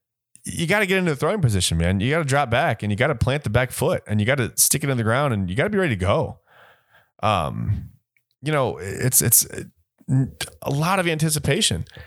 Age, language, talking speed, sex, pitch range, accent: 30-49, English, 240 wpm, male, 95-135 Hz, American